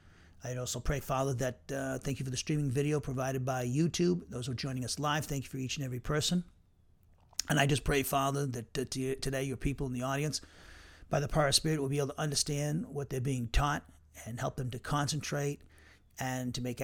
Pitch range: 125-150 Hz